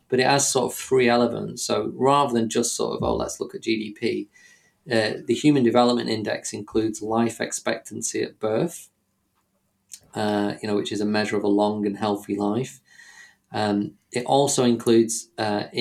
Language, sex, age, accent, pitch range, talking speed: English, male, 20-39, British, 105-120 Hz, 175 wpm